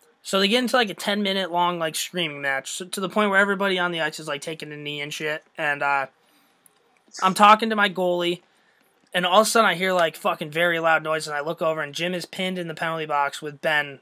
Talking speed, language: 255 wpm, English